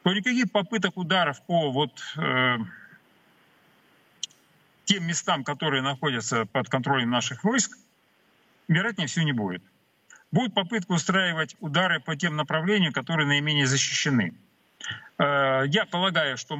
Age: 40-59